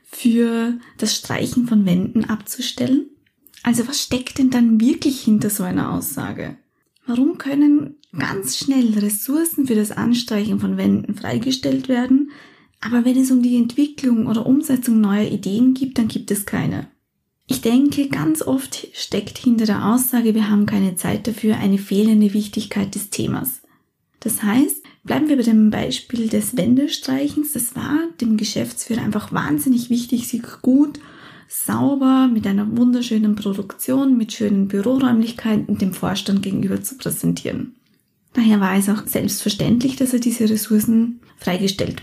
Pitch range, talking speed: 210-255 Hz, 145 wpm